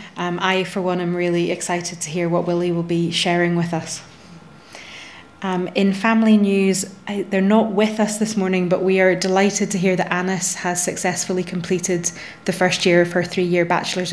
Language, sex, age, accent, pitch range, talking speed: English, female, 20-39, British, 175-190 Hz, 185 wpm